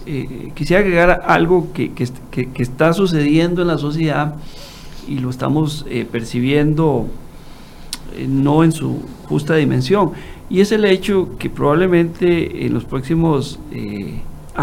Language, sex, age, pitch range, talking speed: Spanish, male, 40-59, 125-160 Hz, 135 wpm